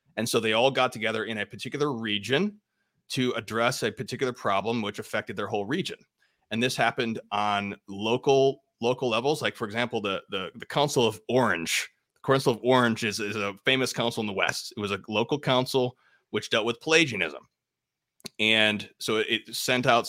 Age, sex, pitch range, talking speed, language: 30-49, male, 105-130 Hz, 190 wpm, English